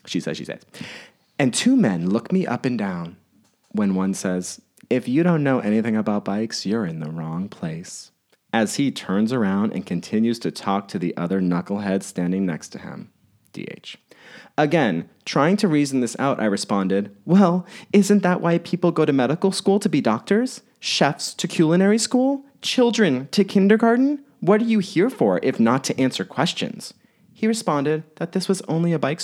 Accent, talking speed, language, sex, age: American, 185 wpm, English, male, 30-49